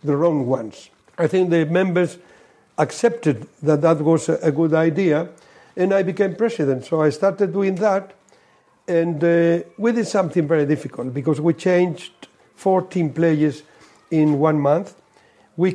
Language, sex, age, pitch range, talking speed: English, male, 60-79, 155-190 Hz, 150 wpm